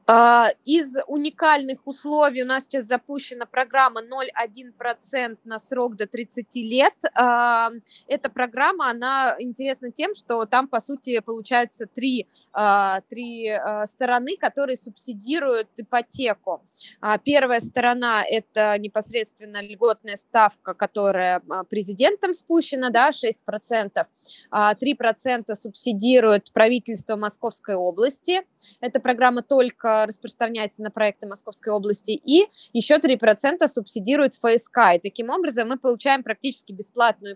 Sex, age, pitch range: female, 20-39, 215-260 Hz